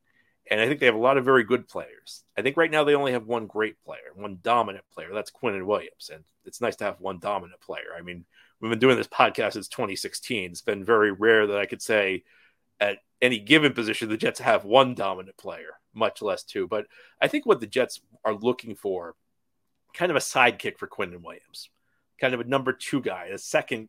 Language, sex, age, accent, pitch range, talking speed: English, male, 40-59, American, 105-135 Hz, 225 wpm